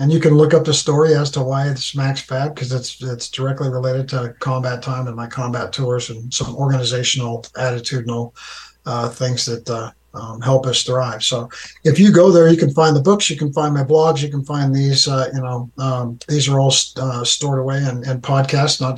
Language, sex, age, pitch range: English, male, 50-69, 125-150 Hz